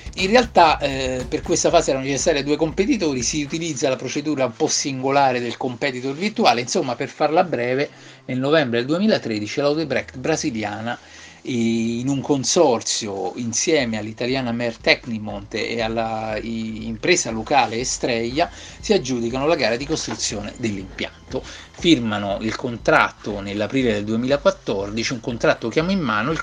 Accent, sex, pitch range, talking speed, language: native, male, 110-145 Hz, 140 wpm, Italian